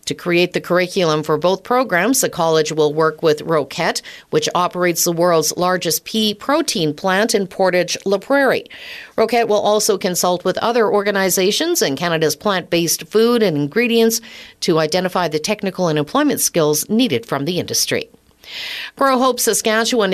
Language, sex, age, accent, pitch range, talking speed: English, female, 50-69, American, 165-220 Hz, 160 wpm